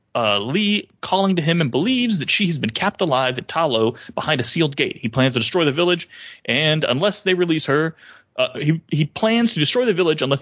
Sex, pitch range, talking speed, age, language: male, 140-195 Hz, 225 wpm, 30-49, English